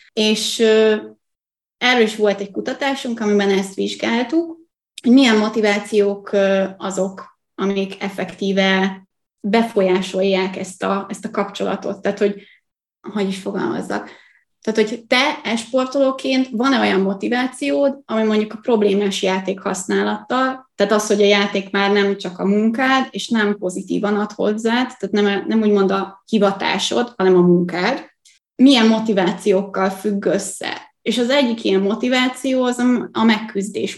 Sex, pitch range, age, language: female, 195-230 Hz, 20-39, Hungarian